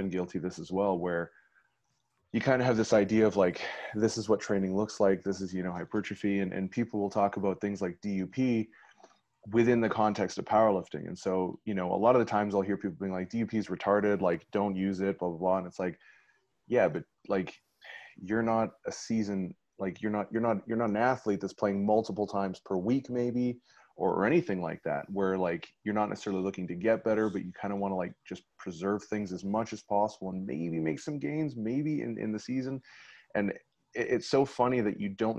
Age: 30-49